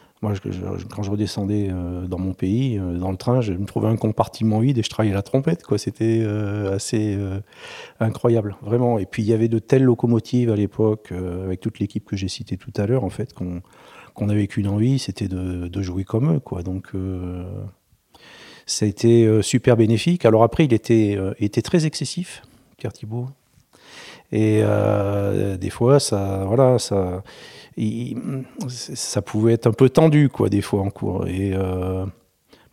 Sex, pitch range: male, 95-125 Hz